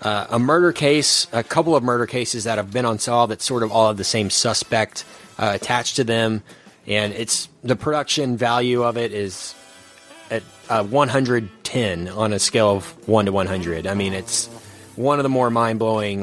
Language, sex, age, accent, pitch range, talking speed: English, male, 30-49, American, 105-130 Hz, 190 wpm